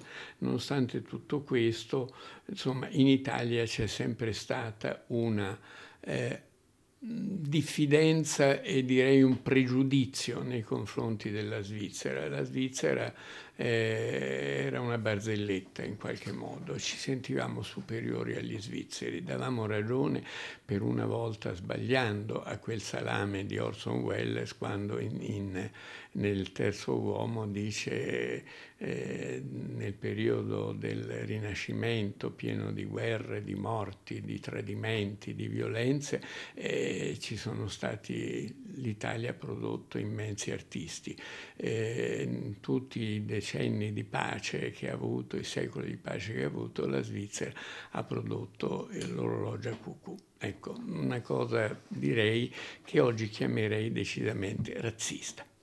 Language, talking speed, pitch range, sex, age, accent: Italian, 110 wpm, 100-130 Hz, male, 60-79, native